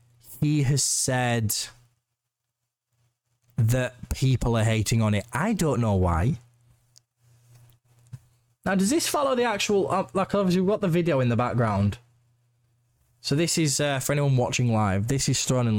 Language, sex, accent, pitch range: English, male, British, 110-135 Hz